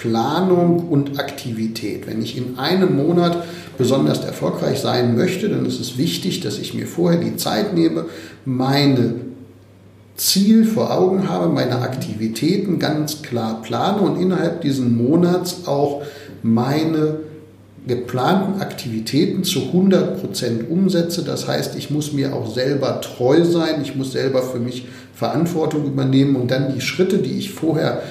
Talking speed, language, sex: 145 wpm, German, male